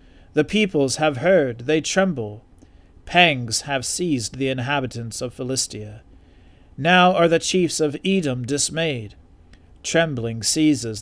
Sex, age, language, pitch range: male, 40-59, English, 105-145 Hz